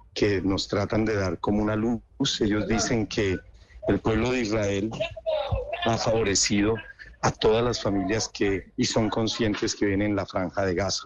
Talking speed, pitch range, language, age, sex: 175 wpm, 95-110 Hz, Spanish, 50-69, male